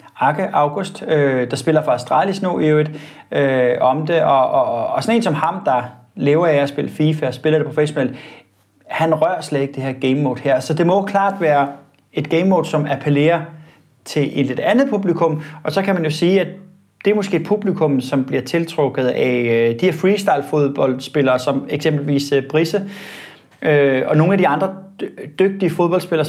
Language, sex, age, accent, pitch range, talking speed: Danish, male, 30-49, native, 140-180 Hz, 190 wpm